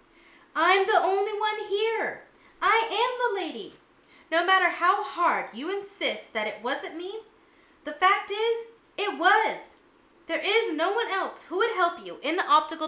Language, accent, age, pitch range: English, American, 30-49, 275-370 Hz